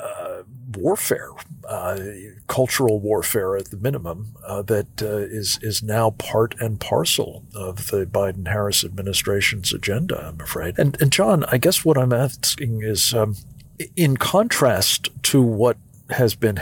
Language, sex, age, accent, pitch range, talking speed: English, male, 50-69, American, 100-125 Hz, 140 wpm